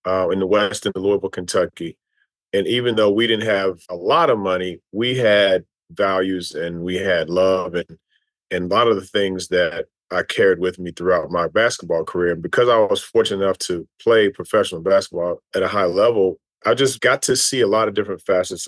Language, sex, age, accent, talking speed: English, male, 30-49, American, 205 wpm